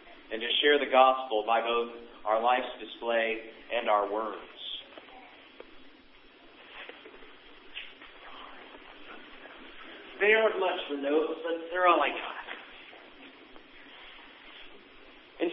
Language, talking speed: English, 95 wpm